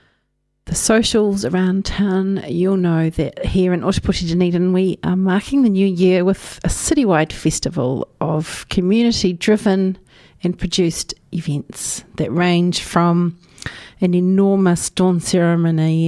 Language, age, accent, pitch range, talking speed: English, 40-59, Australian, 165-195 Hz, 125 wpm